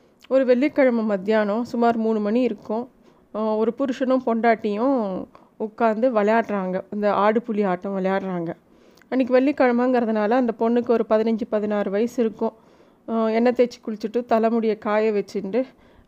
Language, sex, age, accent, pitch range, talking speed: Tamil, female, 30-49, native, 215-250 Hz, 120 wpm